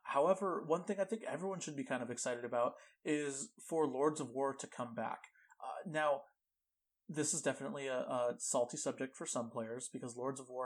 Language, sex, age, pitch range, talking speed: English, male, 30-49, 125-170 Hz, 205 wpm